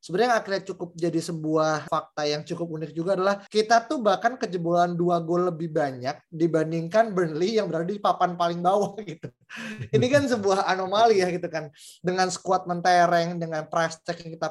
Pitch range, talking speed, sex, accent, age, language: 160-200 Hz, 180 wpm, male, native, 20-39, Indonesian